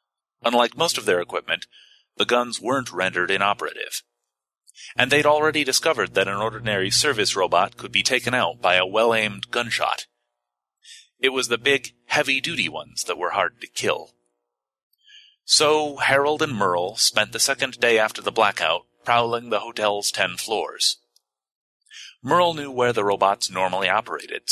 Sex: male